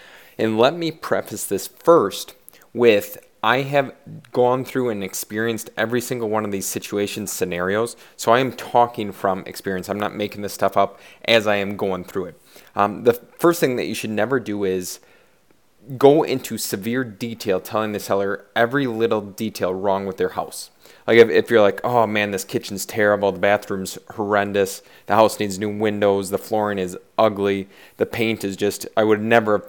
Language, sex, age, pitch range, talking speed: English, male, 20-39, 100-120 Hz, 185 wpm